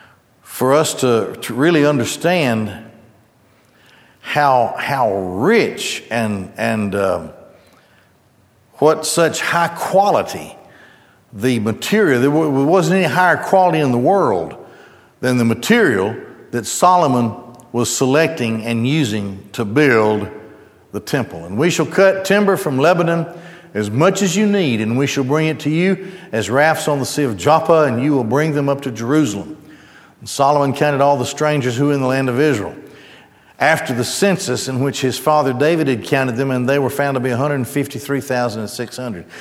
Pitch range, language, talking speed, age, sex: 120-160 Hz, English, 155 wpm, 60-79, male